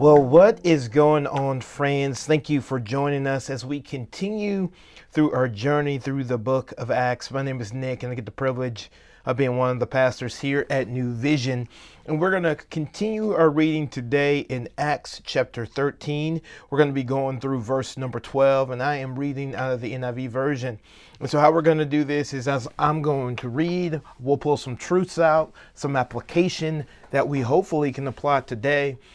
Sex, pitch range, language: male, 125-150 Hz, English